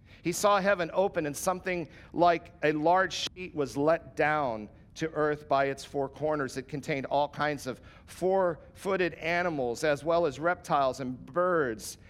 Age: 50-69